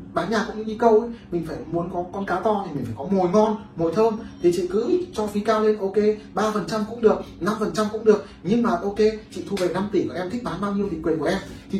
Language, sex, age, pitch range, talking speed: Vietnamese, male, 20-39, 150-215 Hz, 280 wpm